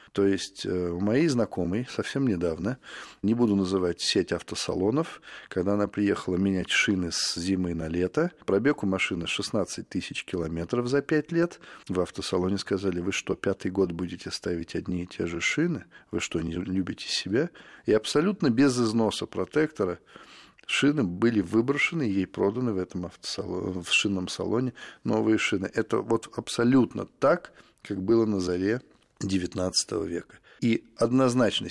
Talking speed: 150 wpm